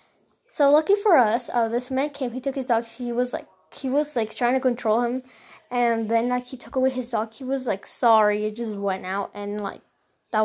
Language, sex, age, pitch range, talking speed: English, female, 10-29, 225-295 Hz, 235 wpm